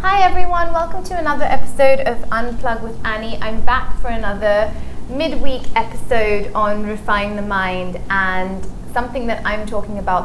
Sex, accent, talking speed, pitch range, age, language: female, British, 150 wpm, 195-240 Hz, 20-39, English